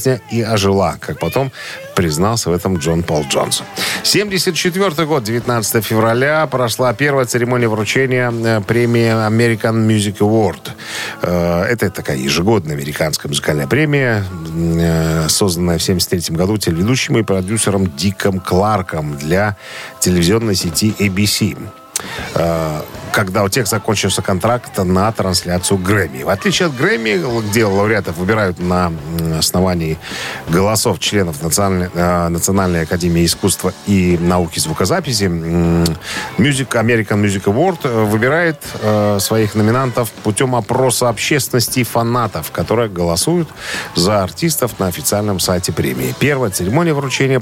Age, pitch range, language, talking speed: 40-59, 90-120 Hz, Russian, 110 wpm